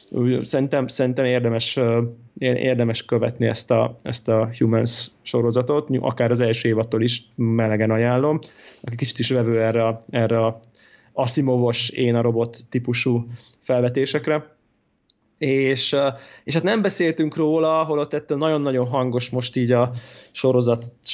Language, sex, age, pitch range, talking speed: Hungarian, male, 20-39, 120-140 Hz, 130 wpm